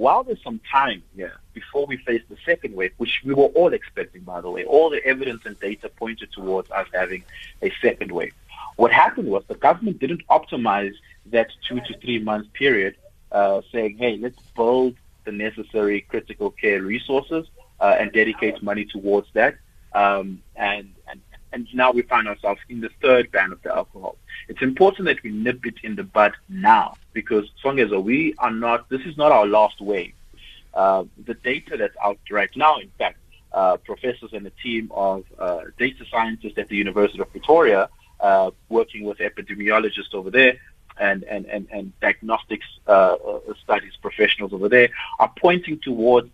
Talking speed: 180 wpm